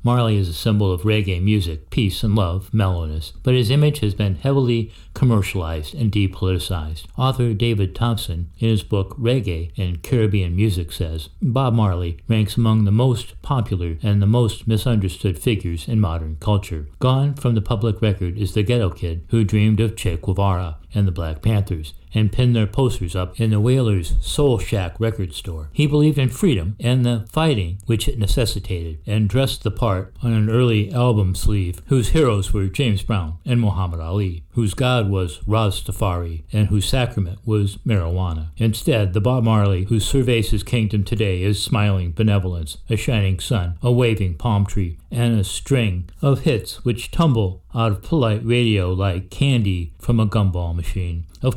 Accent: American